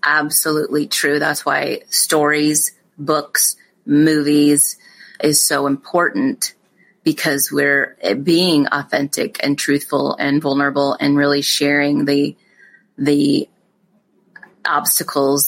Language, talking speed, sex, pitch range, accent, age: English, 95 wpm, female, 145-175 Hz, American, 30-49